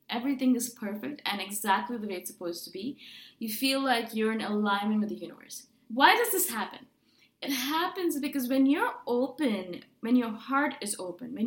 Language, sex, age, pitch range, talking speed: English, female, 20-39, 225-280 Hz, 190 wpm